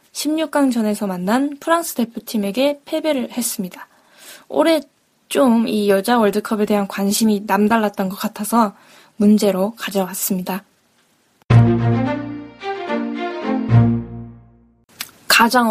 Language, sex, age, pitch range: Korean, female, 20-39, 205-260 Hz